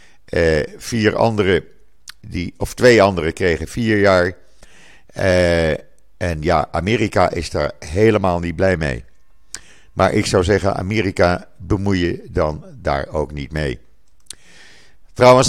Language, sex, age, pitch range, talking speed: Dutch, male, 50-69, 85-115 Hz, 120 wpm